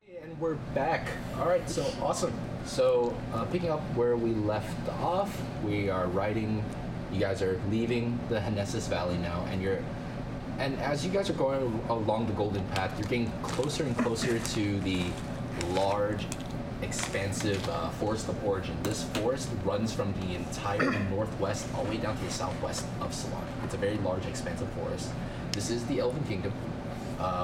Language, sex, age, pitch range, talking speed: English, male, 20-39, 100-130 Hz, 175 wpm